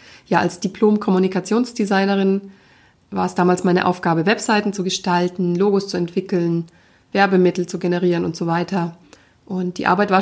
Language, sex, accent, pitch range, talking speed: German, female, German, 180-215 Hz, 140 wpm